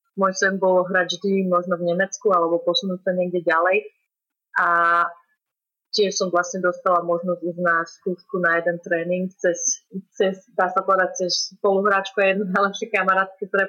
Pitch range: 170-185 Hz